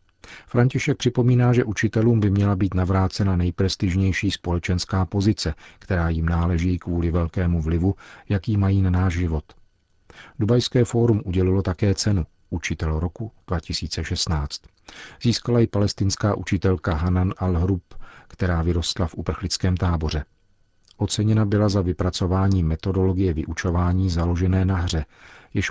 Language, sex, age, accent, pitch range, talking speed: Czech, male, 50-69, native, 90-100 Hz, 120 wpm